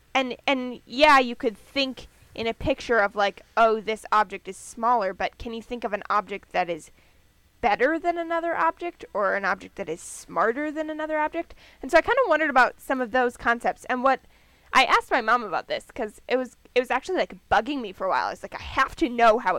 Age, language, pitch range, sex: 10-29, English, 200-270 Hz, female